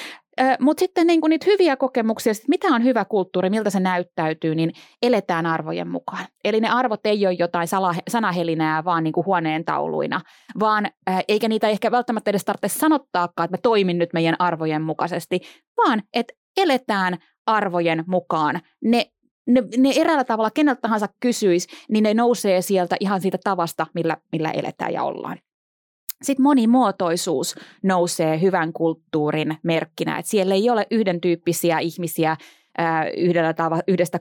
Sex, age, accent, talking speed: female, 20-39, native, 145 wpm